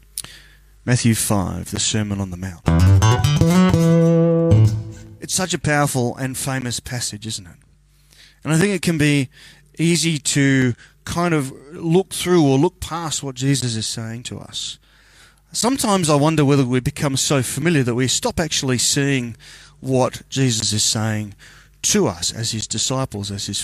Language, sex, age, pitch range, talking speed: English, male, 30-49, 115-160 Hz, 155 wpm